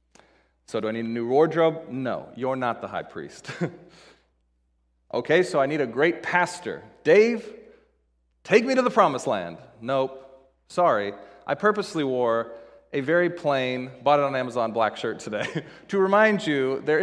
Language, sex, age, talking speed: English, male, 30-49, 160 wpm